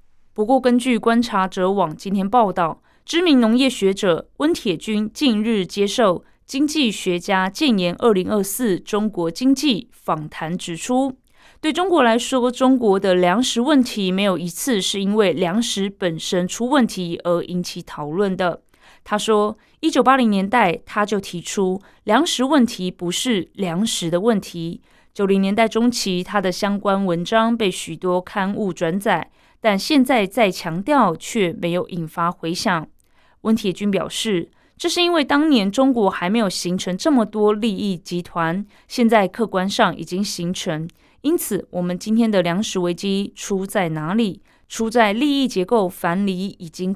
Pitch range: 180-235 Hz